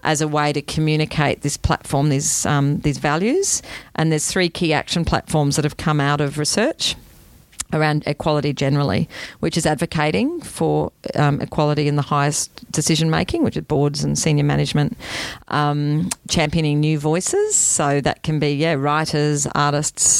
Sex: female